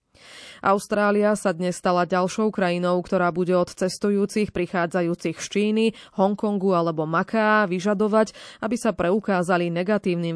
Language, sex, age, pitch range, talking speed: Slovak, female, 20-39, 175-205 Hz, 120 wpm